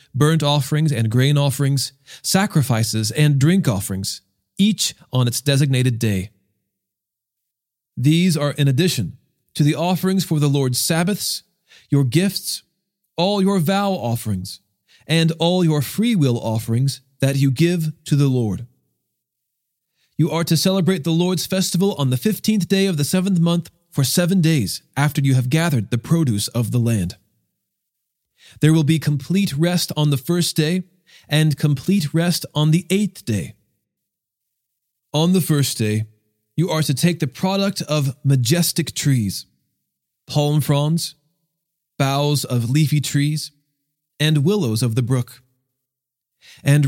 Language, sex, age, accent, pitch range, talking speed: English, male, 40-59, American, 125-170 Hz, 140 wpm